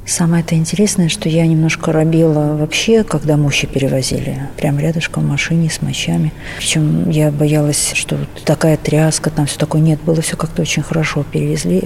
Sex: female